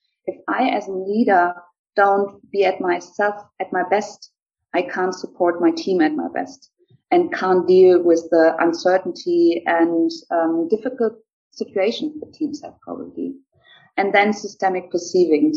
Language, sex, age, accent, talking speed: English, female, 30-49, German, 145 wpm